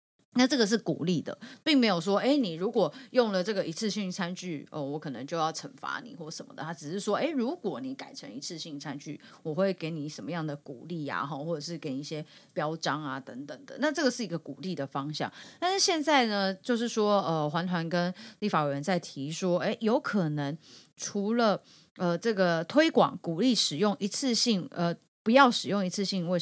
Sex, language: female, Chinese